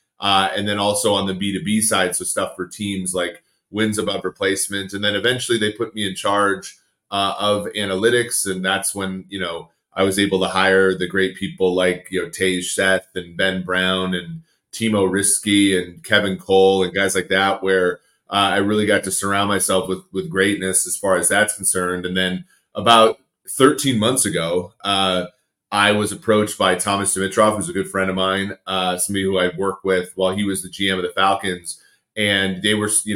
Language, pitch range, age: English, 95-105 Hz, 30-49